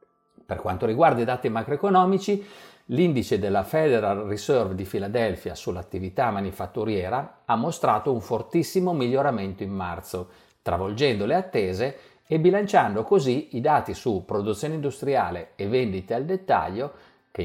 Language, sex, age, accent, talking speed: Italian, male, 50-69, native, 125 wpm